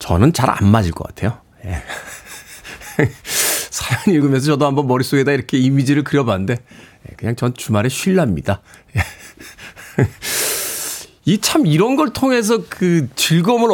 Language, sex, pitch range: Korean, male, 125-205 Hz